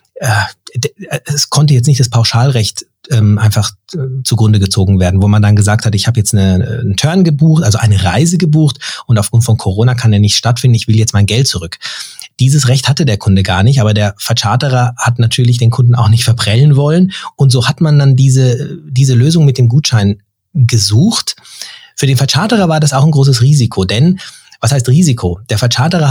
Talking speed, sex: 195 wpm, male